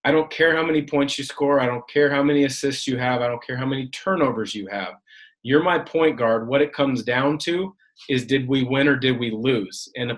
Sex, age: male, 30-49